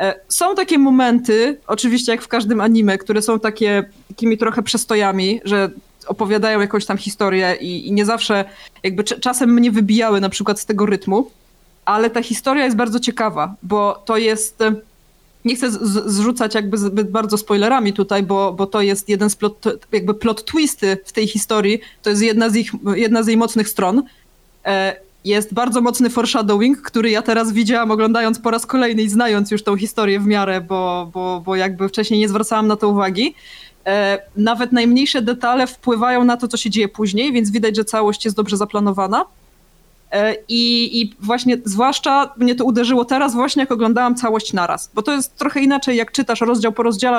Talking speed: 175 wpm